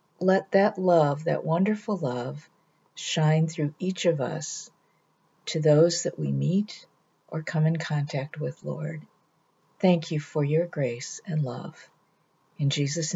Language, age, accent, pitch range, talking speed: English, 50-69, American, 150-180 Hz, 140 wpm